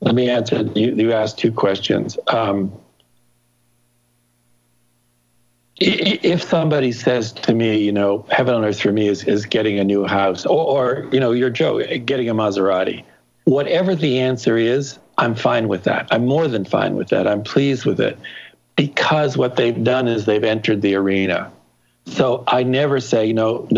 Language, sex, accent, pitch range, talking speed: English, male, American, 105-135 Hz, 175 wpm